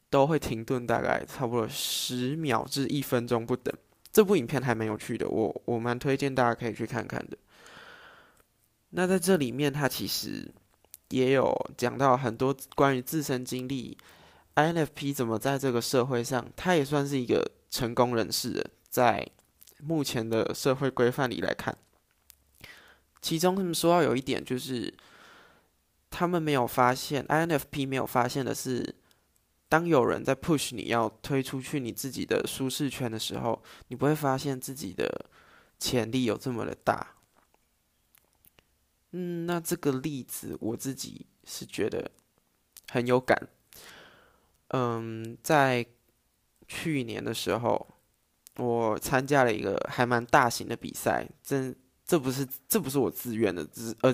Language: Chinese